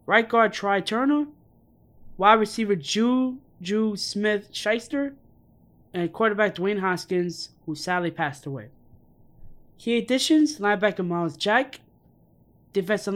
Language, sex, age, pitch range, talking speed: English, male, 20-39, 145-210 Hz, 100 wpm